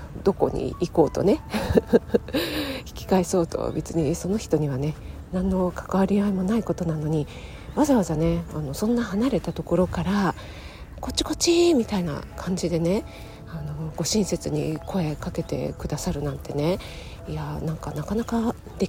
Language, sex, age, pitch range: Japanese, female, 40-59, 150-210 Hz